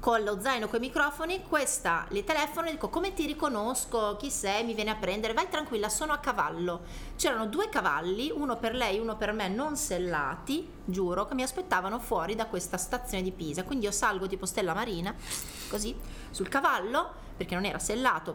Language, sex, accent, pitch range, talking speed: Italian, female, native, 200-280 Hz, 195 wpm